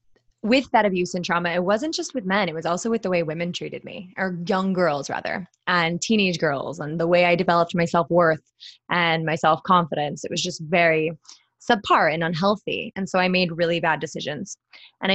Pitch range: 170-200 Hz